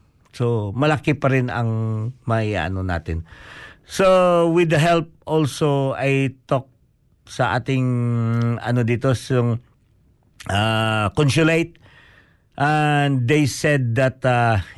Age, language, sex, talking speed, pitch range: 50-69, Filipino, male, 110 wpm, 115-155 Hz